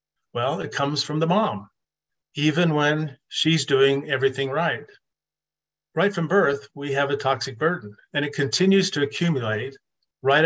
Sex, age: male, 50-69